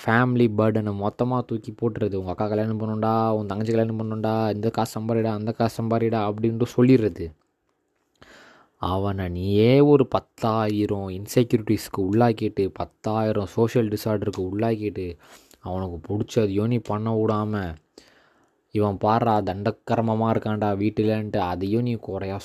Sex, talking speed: male, 115 wpm